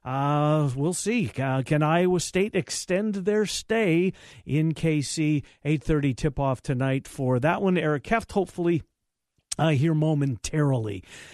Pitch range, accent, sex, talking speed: 145-205 Hz, American, male, 125 wpm